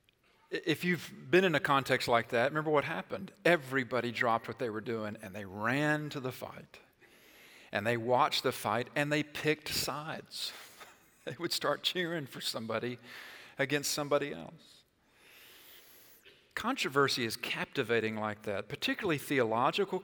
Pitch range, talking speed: 125-165 Hz, 145 wpm